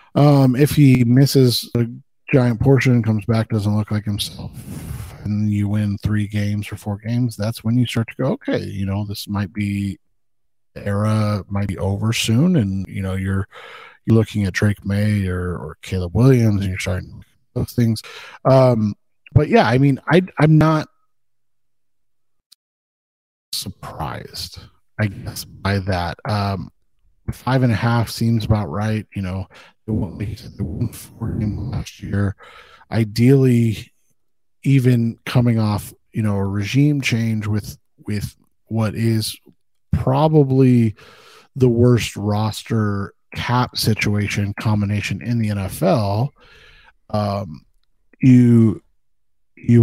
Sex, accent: male, American